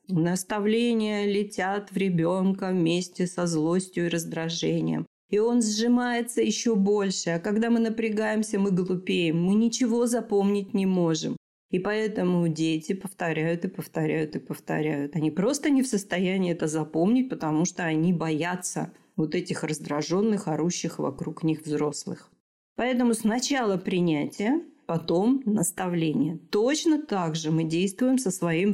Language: Russian